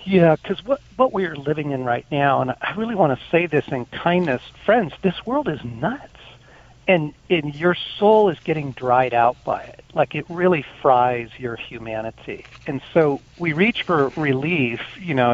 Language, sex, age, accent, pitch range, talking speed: English, male, 50-69, American, 125-165 Hz, 185 wpm